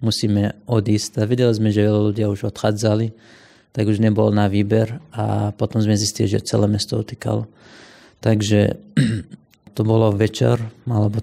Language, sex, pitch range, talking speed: Slovak, male, 105-115 Hz, 150 wpm